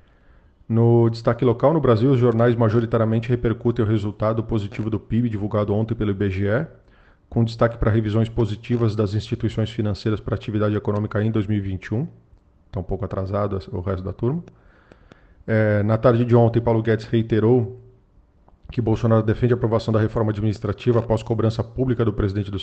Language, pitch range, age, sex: Portuguese, 105-115 Hz, 40-59, male